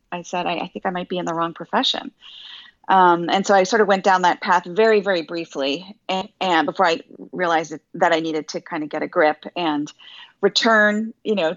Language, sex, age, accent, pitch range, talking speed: English, female, 30-49, American, 170-205 Hz, 230 wpm